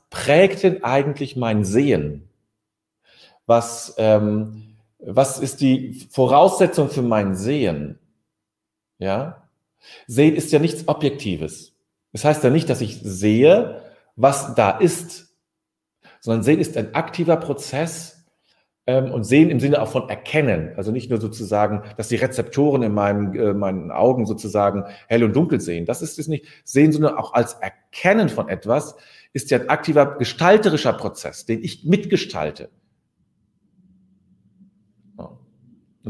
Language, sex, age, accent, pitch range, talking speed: German, male, 40-59, German, 110-150 Hz, 135 wpm